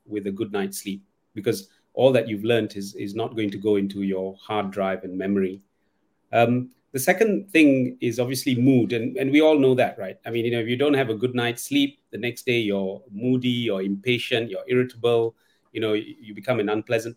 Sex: male